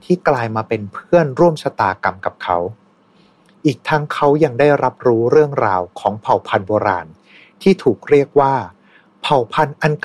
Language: Thai